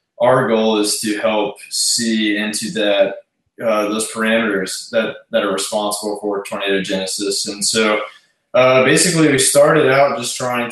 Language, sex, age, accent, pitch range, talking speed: English, male, 20-39, American, 105-120 Hz, 145 wpm